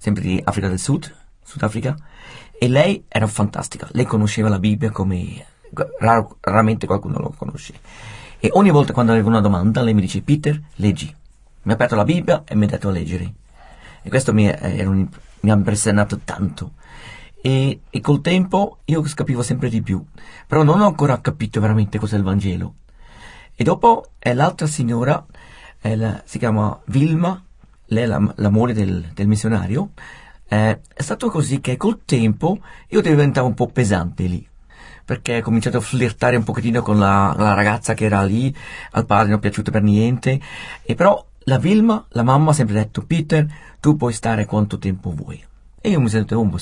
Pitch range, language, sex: 105-140 Hz, Italian, male